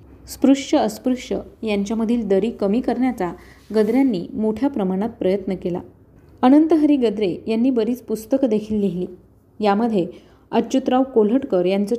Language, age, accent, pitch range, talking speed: Marathi, 30-49, native, 200-255 Hz, 110 wpm